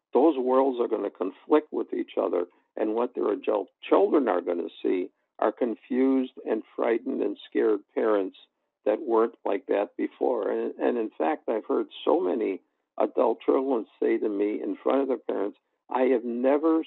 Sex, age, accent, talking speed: male, 60-79, American, 180 wpm